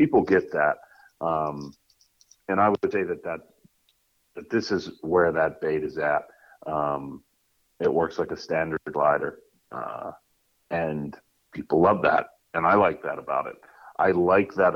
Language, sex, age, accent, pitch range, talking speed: English, male, 40-59, American, 80-100 Hz, 160 wpm